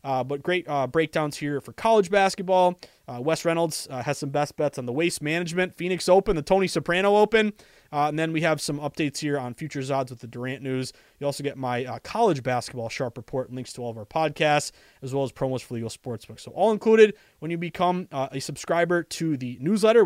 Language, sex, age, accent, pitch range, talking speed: English, male, 20-39, American, 140-190 Hz, 225 wpm